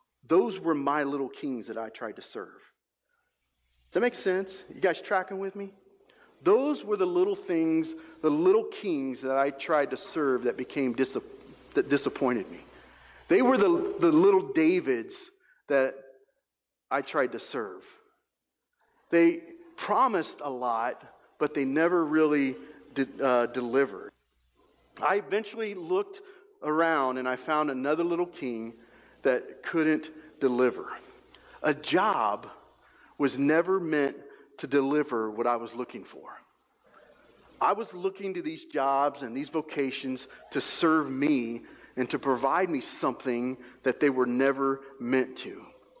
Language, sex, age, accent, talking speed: English, male, 40-59, American, 140 wpm